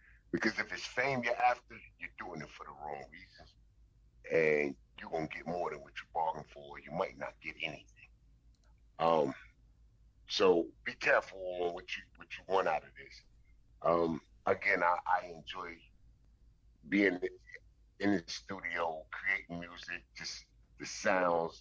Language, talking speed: English, 155 wpm